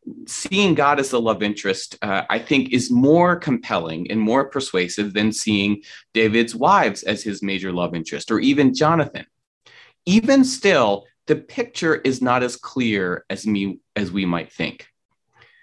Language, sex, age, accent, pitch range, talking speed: English, male, 30-49, American, 110-170 Hz, 155 wpm